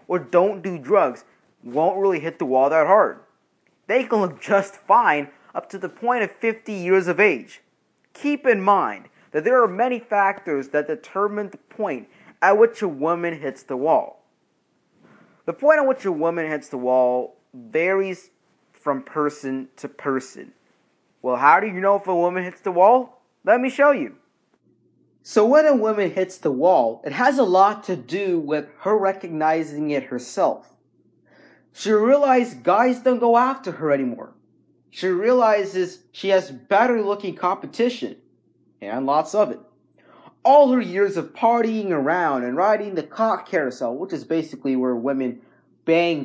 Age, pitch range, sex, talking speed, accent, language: 30-49, 150-225 Hz, male, 165 wpm, American, English